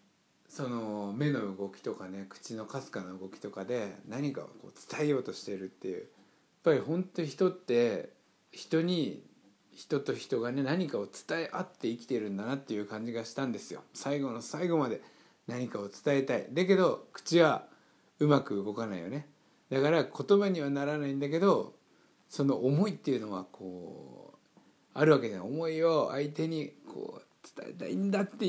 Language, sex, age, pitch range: Japanese, male, 60-79, 105-155 Hz